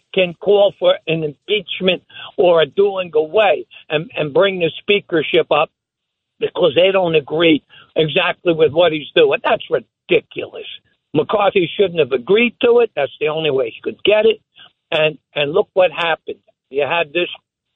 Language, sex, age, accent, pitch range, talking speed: English, male, 60-79, American, 165-240 Hz, 160 wpm